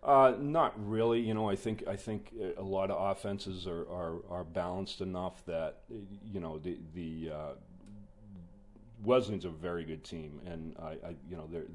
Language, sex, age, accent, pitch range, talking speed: English, male, 40-59, American, 80-90 Hz, 180 wpm